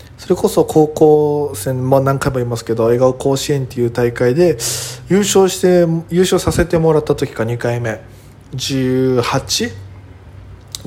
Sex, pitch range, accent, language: male, 120-165 Hz, native, Japanese